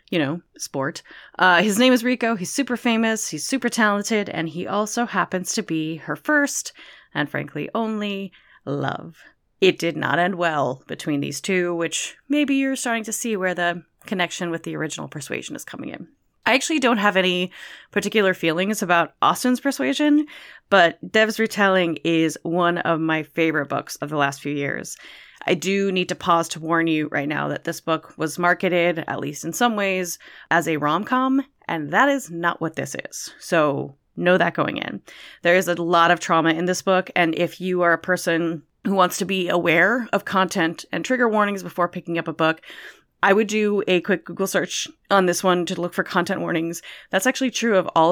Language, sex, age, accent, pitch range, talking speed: English, female, 30-49, American, 165-210 Hz, 200 wpm